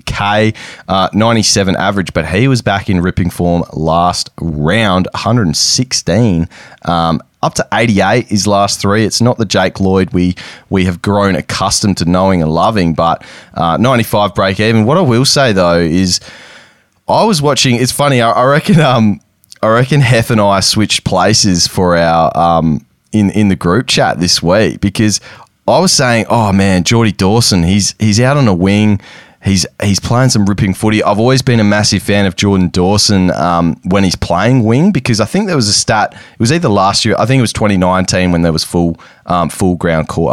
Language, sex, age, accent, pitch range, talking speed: English, male, 20-39, Australian, 90-115 Hz, 205 wpm